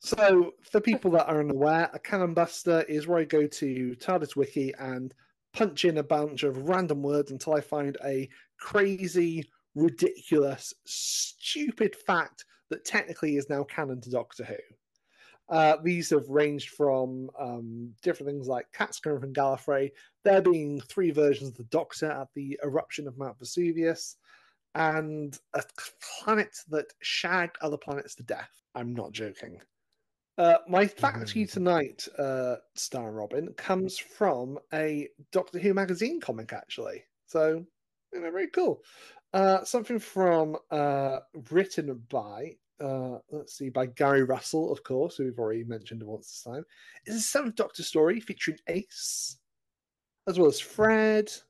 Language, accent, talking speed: English, British, 155 wpm